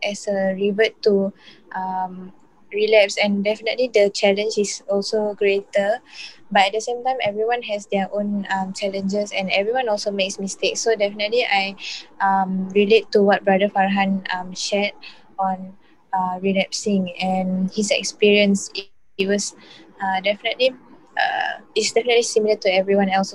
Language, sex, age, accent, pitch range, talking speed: English, female, 10-29, Malaysian, 195-220 Hz, 145 wpm